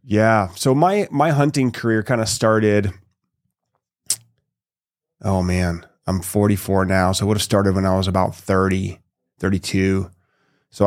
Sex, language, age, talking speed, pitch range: male, English, 30-49, 145 wpm, 95-115 Hz